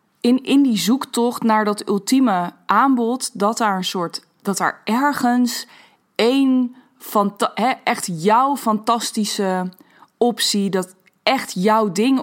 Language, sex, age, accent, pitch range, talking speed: Dutch, female, 20-39, Dutch, 190-245 Hz, 120 wpm